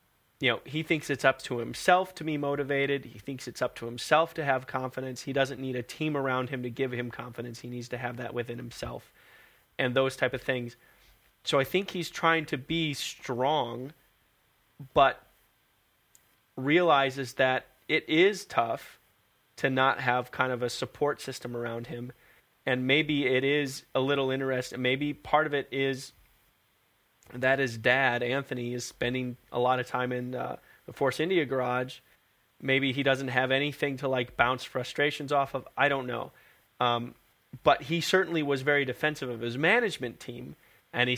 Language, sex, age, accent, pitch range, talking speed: English, male, 30-49, American, 125-140 Hz, 180 wpm